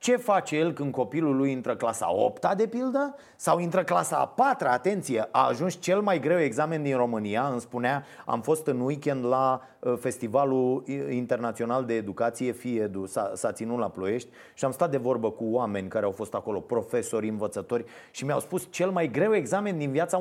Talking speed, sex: 185 wpm, male